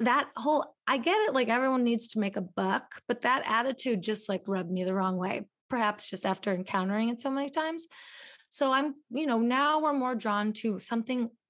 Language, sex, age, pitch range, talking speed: English, female, 30-49, 205-260 Hz, 210 wpm